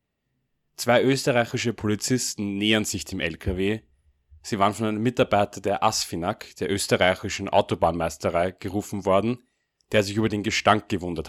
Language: German